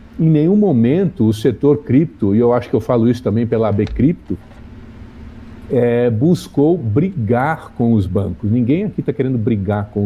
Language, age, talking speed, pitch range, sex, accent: Portuguese, 50-69, 165 wpm, 110-155 Hz, male, Brazilian